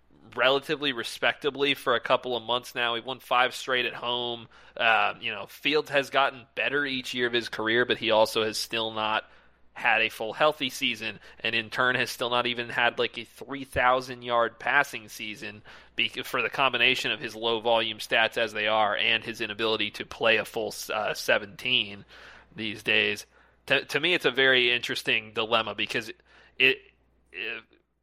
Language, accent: English, American